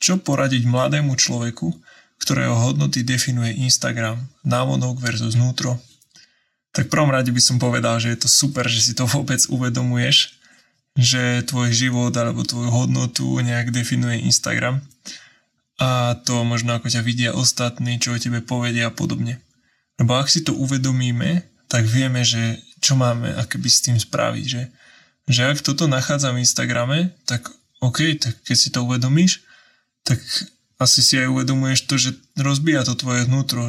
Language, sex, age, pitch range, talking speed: Slovak, male, 20-39, 120-135 Hz, 155 wpm